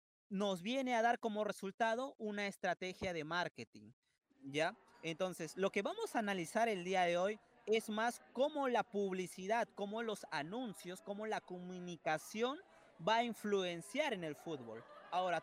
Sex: male